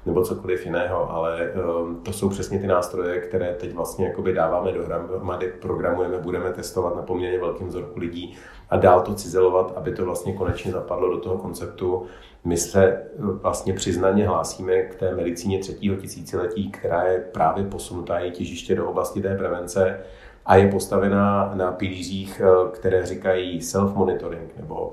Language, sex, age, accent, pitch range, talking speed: Czech, male, 30-49, native, 90-95 Hz, 150 wpm